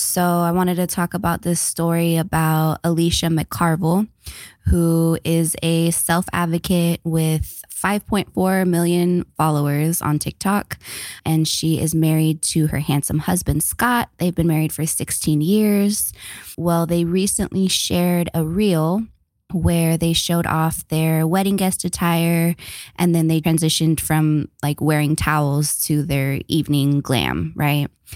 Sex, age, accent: female, 20-39, American